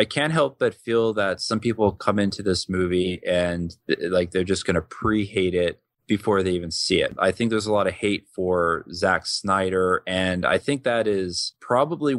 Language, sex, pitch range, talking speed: English, male, 90-110 Hz, 200 wpm